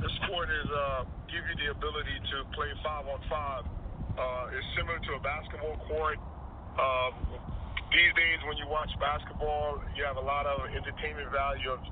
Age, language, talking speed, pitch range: 40-59, English, 165 wpm, 100-150 Hz